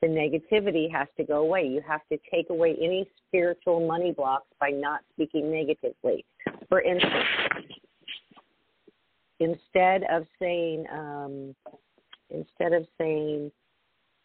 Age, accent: 50-69, American